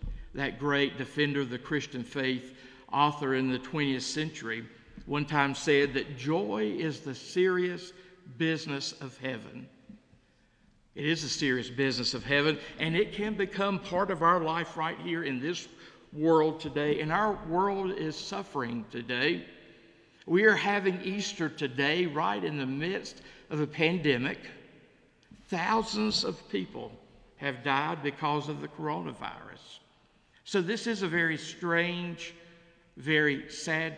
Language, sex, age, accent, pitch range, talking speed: English, male, 60-79, American, 135-170 Hz, 140 wpm